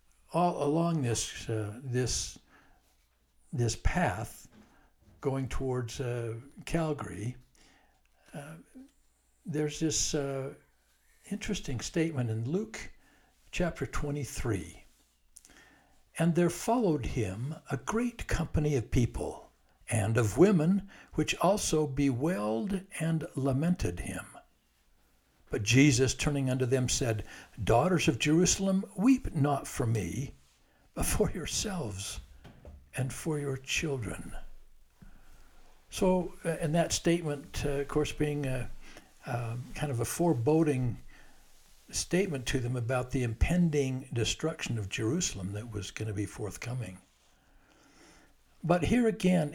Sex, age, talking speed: male, 60-79, 110 wpm